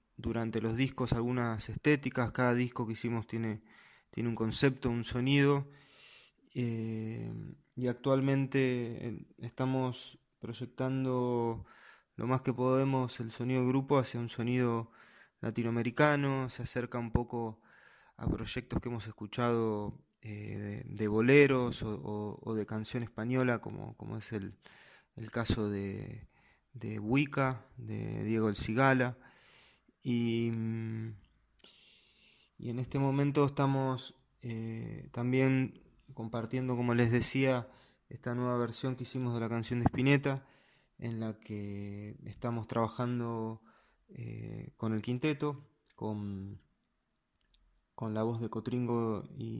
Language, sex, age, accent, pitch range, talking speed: Spanish, male, 20-39, Argentinian, 115-130 Hz, 125 wpm